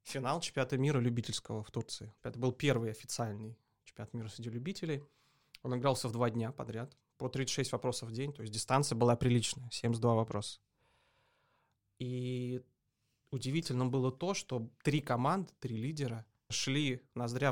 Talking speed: 145 wpm